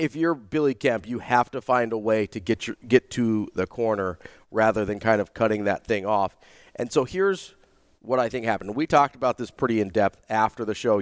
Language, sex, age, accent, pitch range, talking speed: English, male, 40-59, American, 105-130 Hz, 230 wpm